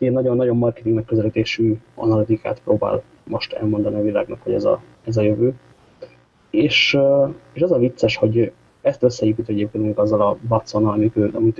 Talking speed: 145 wpm